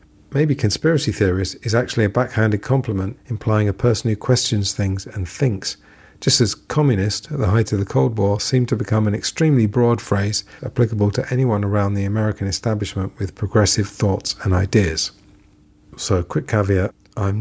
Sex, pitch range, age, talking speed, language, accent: male, 95-110 Hz, 40-59, 170 wpm, English, British